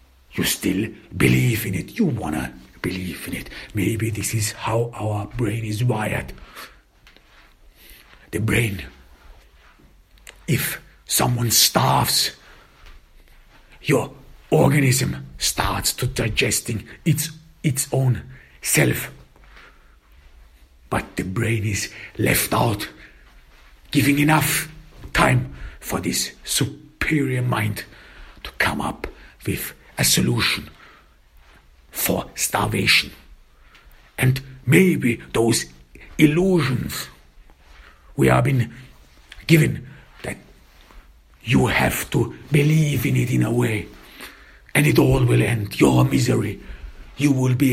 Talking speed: 100 wpm